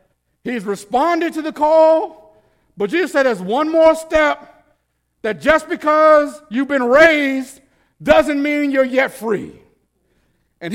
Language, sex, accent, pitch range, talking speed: English, male, American, 190-245 Hz, 135 wpm